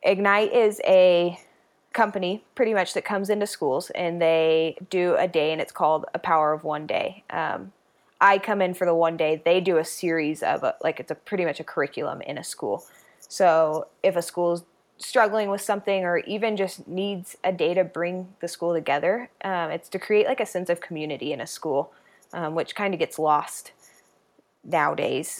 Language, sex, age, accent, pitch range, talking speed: English, female, 20-39, American, 160-185 Hz, 195 wpm